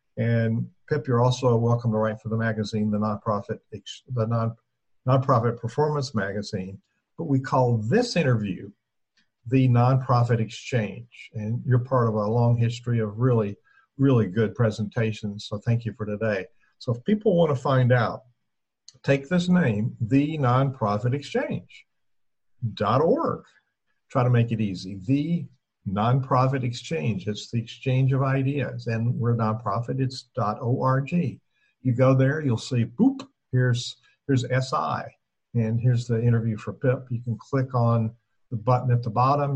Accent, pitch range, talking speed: American, 110-130 Hz, 145 wpm